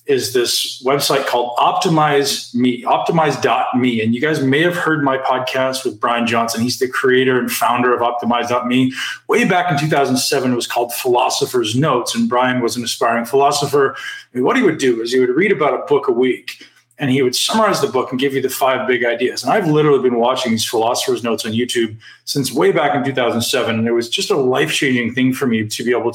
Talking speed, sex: 215 wpm, male